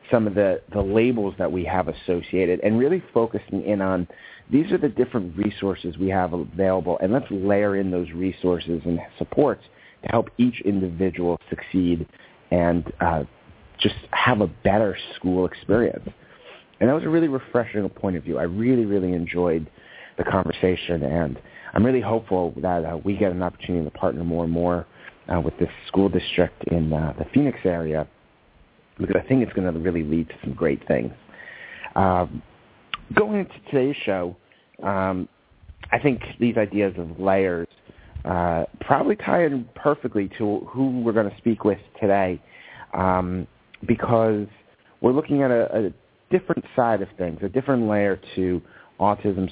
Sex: male